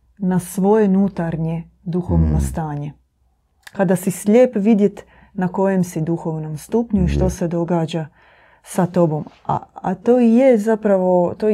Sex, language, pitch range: female, Croatian, 165-200 Hz